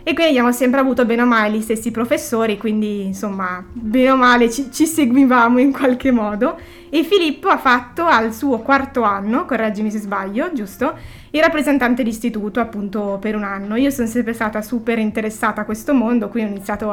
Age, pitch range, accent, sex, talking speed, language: 20-39, 215-260 Hz, native, female, 190 wpm, Italian